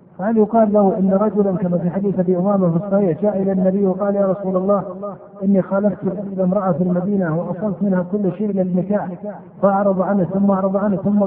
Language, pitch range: Arabic, 185-215 Hz